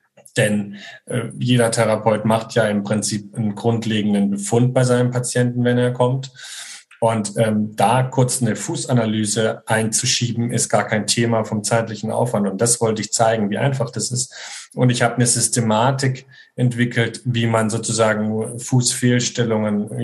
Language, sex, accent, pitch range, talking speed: German, male, German, 110-125 Hz, 150 wpm